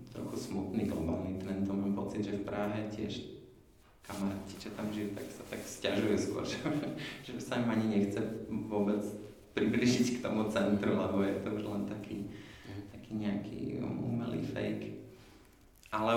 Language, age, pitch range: Slovak, 20-39, 100-120 Hz